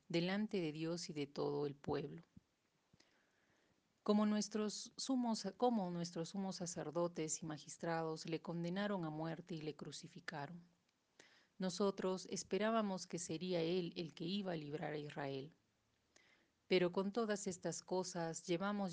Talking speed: 125 wpm